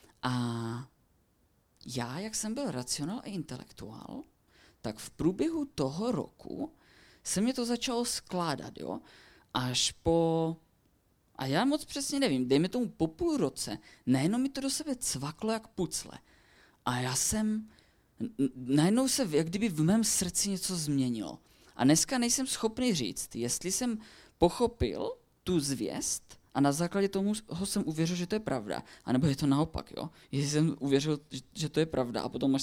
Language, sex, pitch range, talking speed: Czech, female, 125-210 Hz, 160 wpm